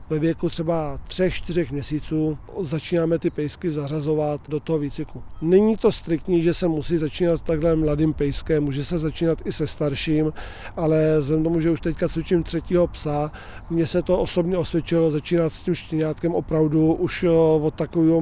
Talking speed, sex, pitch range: 165 wpm, male, 155-175 Hz